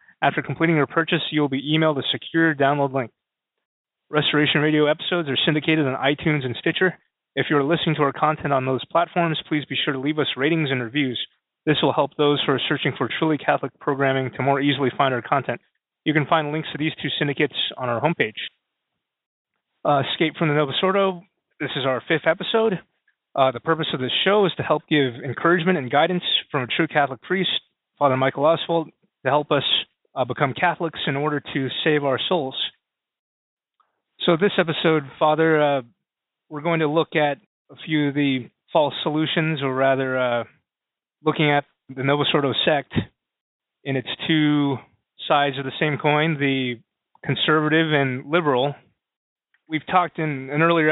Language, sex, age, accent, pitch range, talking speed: English, male, 30-49, American, 135-160 Hz, 180 wpm